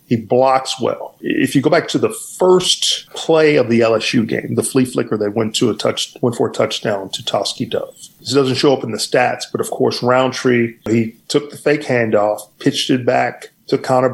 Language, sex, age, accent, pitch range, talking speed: English, male, 40-59, American, 115-140 Hz, 205 wpm